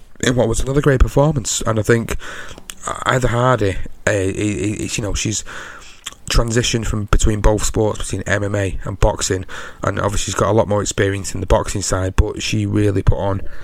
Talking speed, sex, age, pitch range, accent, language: 180 wpm, male, 30-49, 95-115 Hz, British, English